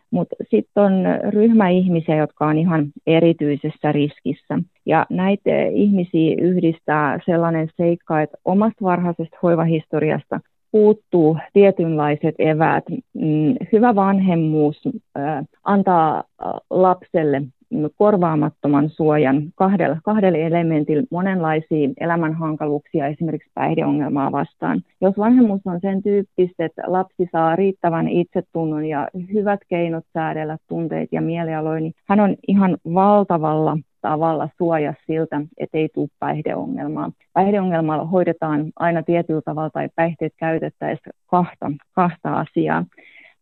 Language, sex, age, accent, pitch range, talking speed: Finnish, female, 30-49, native, 155-180 Hz, 105 wpm